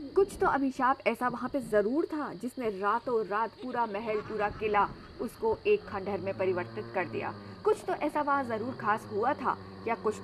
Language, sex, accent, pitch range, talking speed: Hindi, female, native, 210-280 Hz, 190 wpm